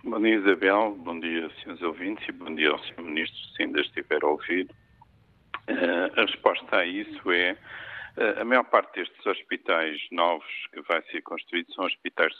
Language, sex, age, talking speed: Portuguese, male, 50-69, 185 wpm